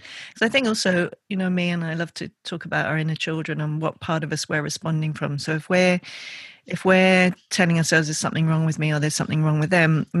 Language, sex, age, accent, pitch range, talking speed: English, female, 40-59, British, 155-185 Hz, 255 wpm